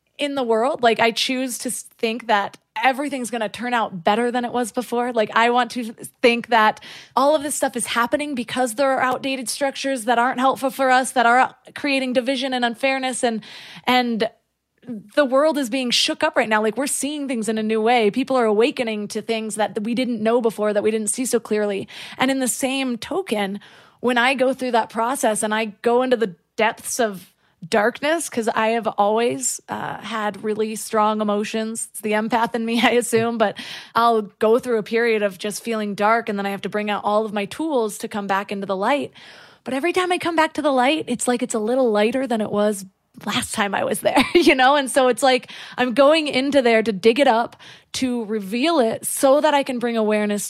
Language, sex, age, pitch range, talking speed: English, female, 20-39, 215-260 Hz, 225 wpm